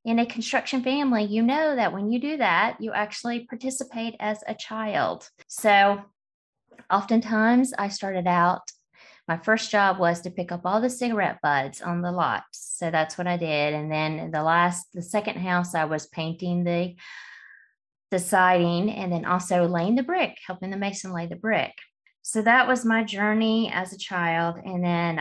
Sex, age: female, 20-39